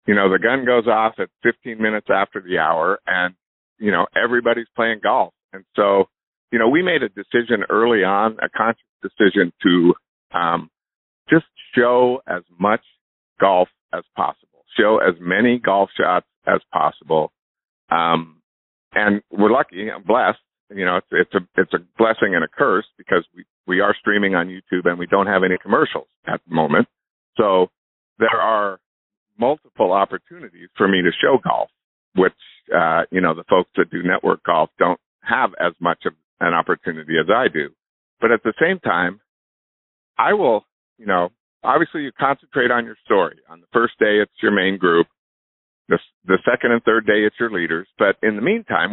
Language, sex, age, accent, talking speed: English, male, 50-69, American, 180 wpm